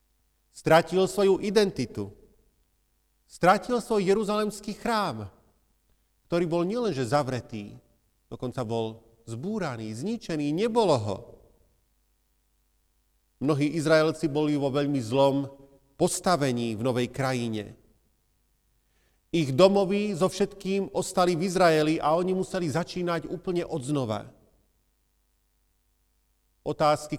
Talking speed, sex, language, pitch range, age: 95 wpm, male, Slovak, 115-170 Hz, 40-59